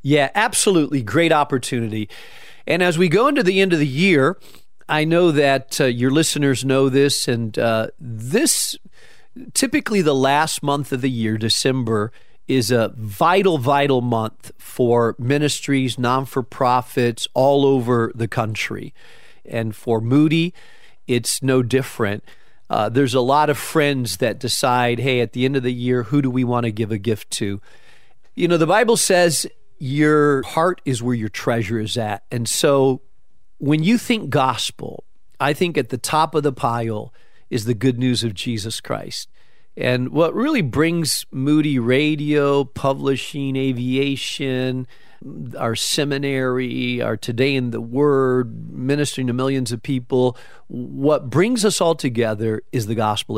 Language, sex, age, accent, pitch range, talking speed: English, male, 40-59, American, 120-150 Hz, 155 wpm